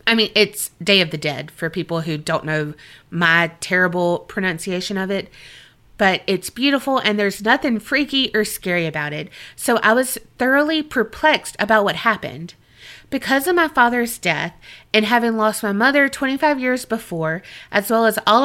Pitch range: 180-250 Hz